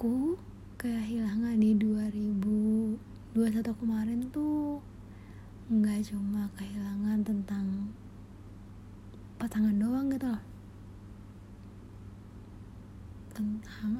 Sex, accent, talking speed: female, native, 65 wpm